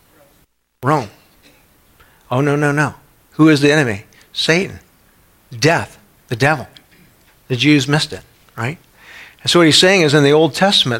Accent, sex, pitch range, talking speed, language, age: American, male, 125-155 Hz, 155 wpm, English, 50-69